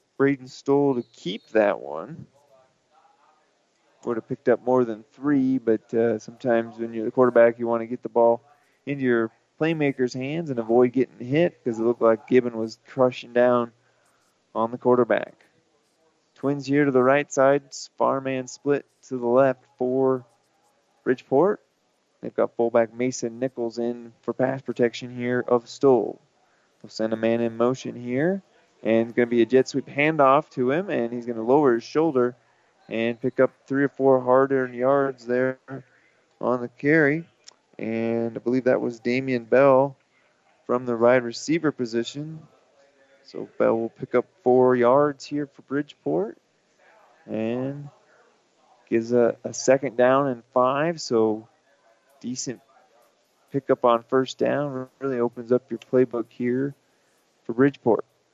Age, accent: 20-39, American